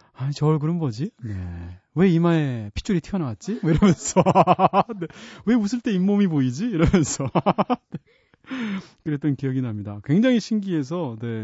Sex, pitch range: male, 120-180 Hz